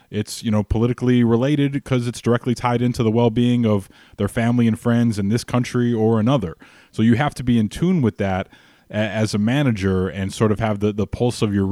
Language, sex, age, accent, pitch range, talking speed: English, male, 20-39, American, 100-115 Hz, 220 wpm